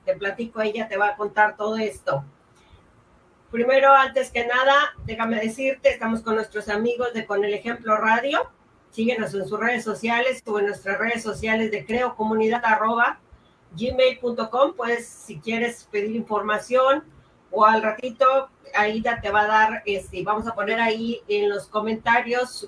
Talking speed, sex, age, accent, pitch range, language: 150 wpm, female, 40-59, Mexican, 200-235 Hz, Spanish